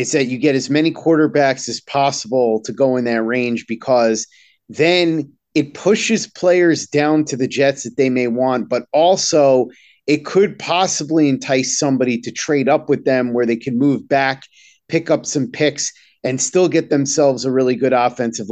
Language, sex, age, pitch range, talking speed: English, male, 30-49, 130-155 Hz, 180 wpm